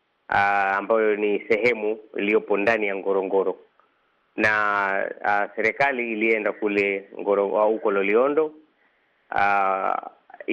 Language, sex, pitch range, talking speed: Swahili, male, 100-115 Hz, 110 wpm